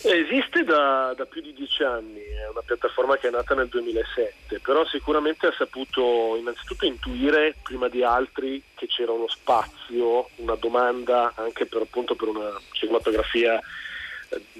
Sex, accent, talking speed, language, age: male, native, 150 wpm, Italian, 30-49